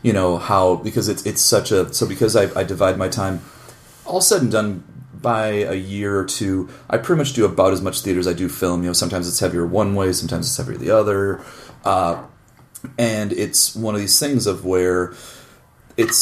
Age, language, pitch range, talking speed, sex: 30-49, English, 90-115 Hz, 215 wpm, male